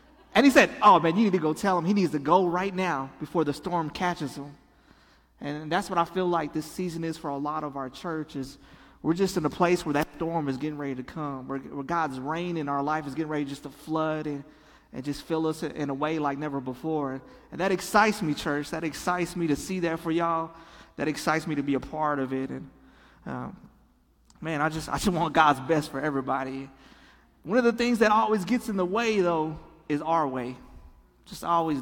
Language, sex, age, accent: English, male, 30-49, American